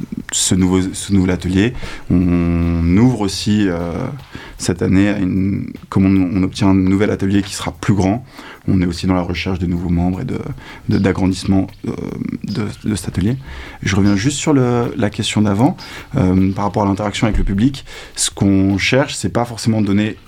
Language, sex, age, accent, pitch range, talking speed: French, male, 20-39, French, 95-115 Hz, 190 wpm